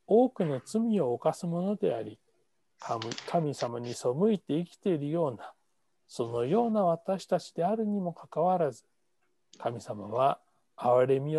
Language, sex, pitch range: Japanese, male, 135-195 Hz